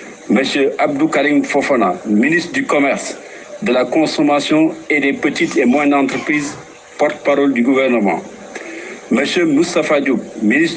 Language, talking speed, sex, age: French, 130 wpm, male, 60-79